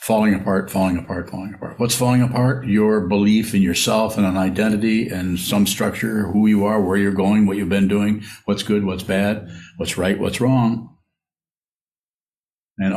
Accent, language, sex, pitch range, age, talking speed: American, English, male, 100-120 Hz, 60-79, 175 wpm